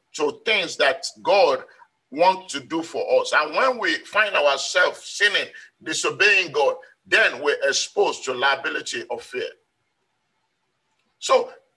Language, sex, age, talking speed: English, male, 50-69, 125 wpm